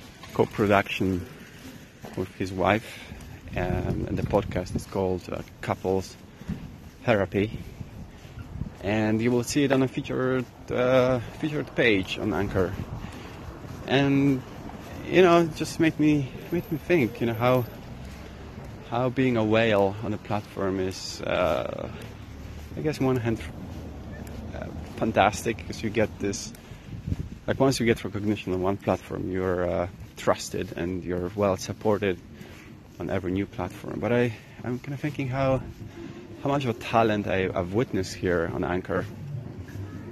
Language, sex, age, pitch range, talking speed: English, male, 30-49, 95-120 Hz, 145 wpm